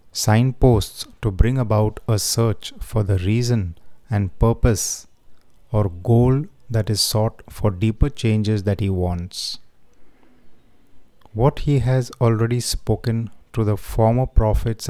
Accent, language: native, Hindi